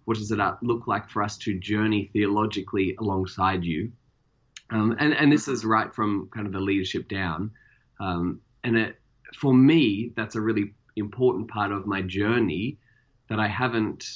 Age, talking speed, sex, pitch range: 20-39, 165 wpm, male, 100-120 Hz